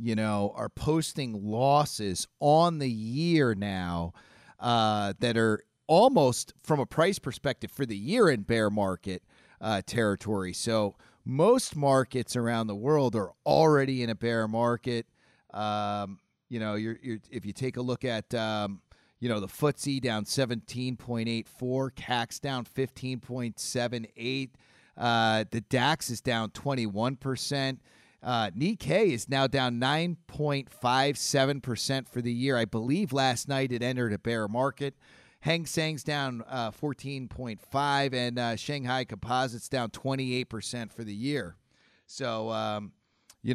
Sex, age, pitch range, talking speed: male, 40-59, 110-135 Hz, 130 wpm